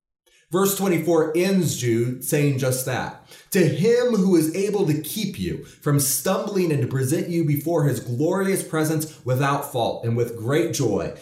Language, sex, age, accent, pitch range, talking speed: English, male, 30-49, American, 130-165 Hz, 165 wpm